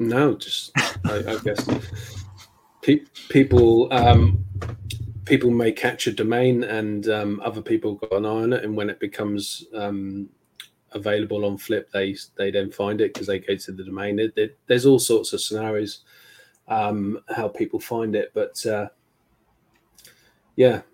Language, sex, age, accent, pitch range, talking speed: English, male, 20-39, British, 100-115 Hz, 160 wpm